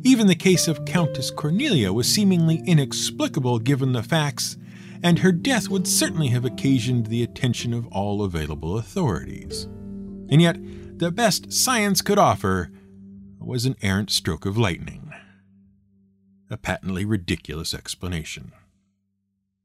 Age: 50-69